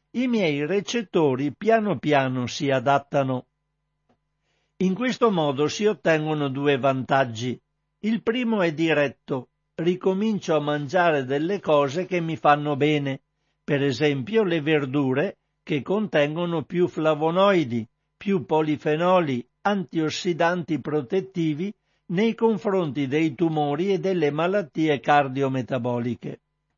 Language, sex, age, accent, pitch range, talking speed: Italian, male, 60-79, native, 145-185 Hz, 105 wpm